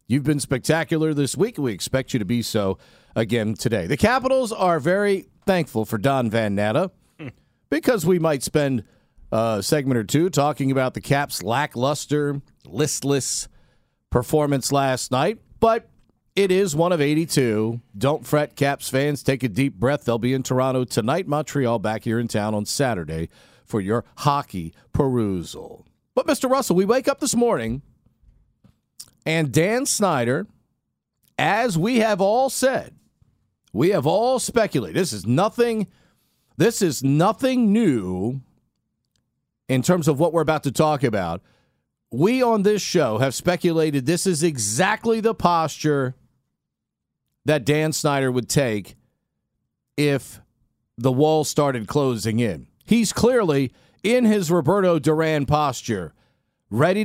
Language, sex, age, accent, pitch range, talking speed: English, male, 50-69, American, 120-175 Hz, 140 wpm